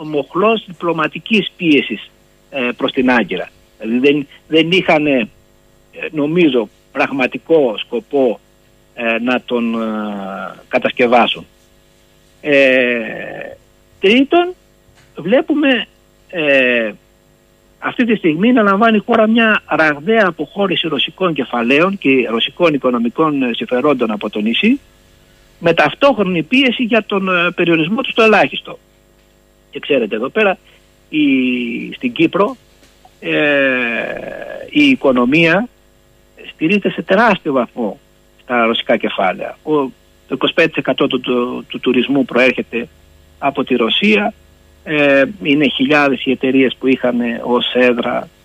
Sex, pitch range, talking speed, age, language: male, 125-190 Hz, 100 wpm, 60-79, Greek